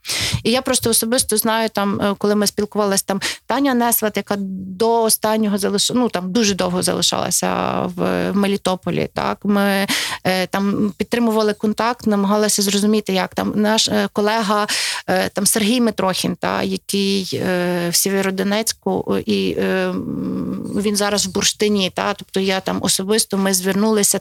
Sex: female